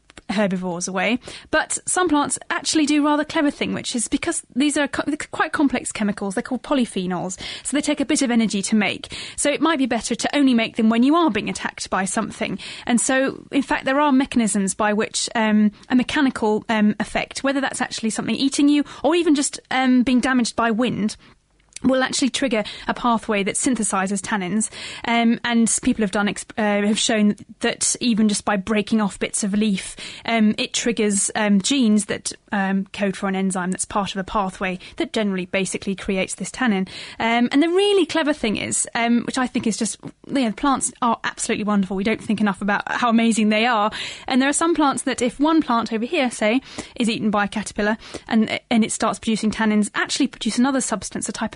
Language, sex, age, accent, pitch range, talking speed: English, female, 10-29, British, 210-265 Hz, 210 wpm